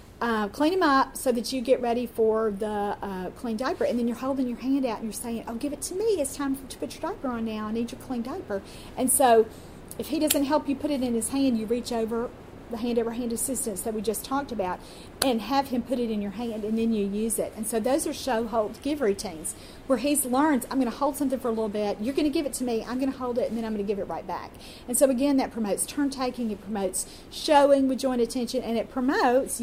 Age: 40-59